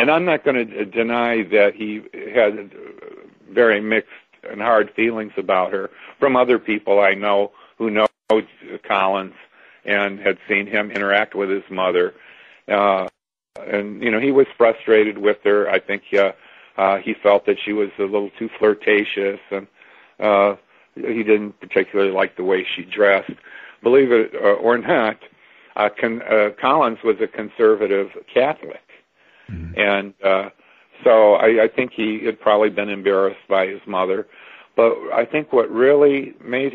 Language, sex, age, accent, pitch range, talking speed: English, male, 50-69, American, 100-125 Hz, 155 wpm